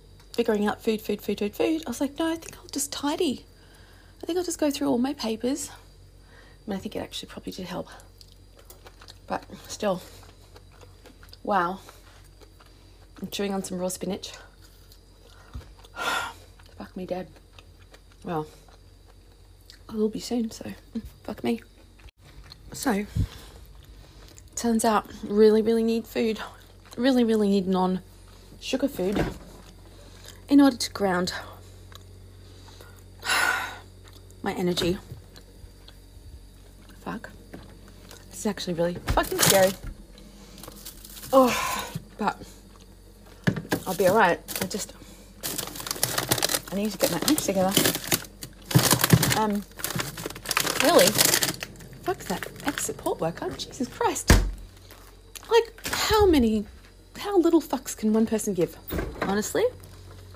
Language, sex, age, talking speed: English, female, 30-49, 115 wpm